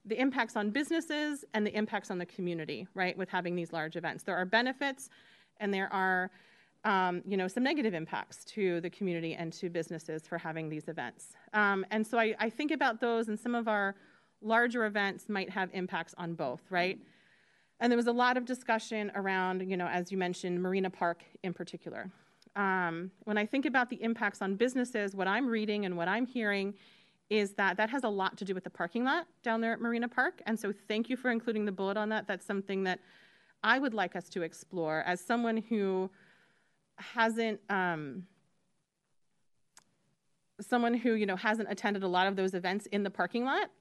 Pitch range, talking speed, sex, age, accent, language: 185-230 Hz, 200 wpm, female, 30-49, American, English